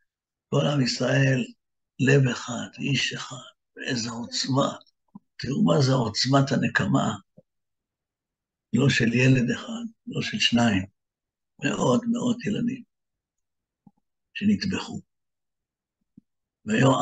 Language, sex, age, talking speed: Hebrew, male, 60-79, 90 wpm